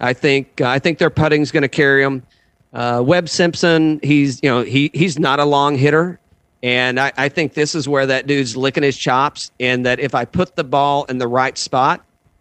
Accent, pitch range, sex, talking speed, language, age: American, 130-165 Hz, male, 220 wpm, English, 40-59